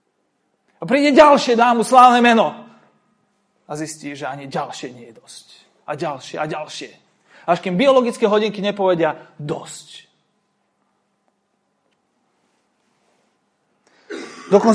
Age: 30-49